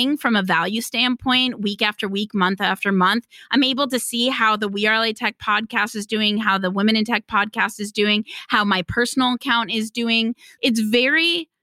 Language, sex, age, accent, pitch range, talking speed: English, female, 20-39, American, 215-270 Hz, 200 wpm